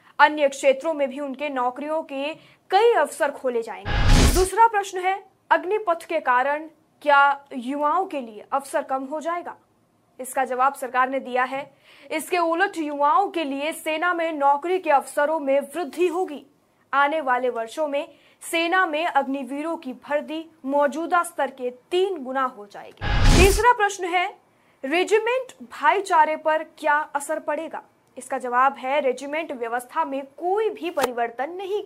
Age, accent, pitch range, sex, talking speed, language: 20-39, native, 270-350 Hz, female, 150 wpm, Hindi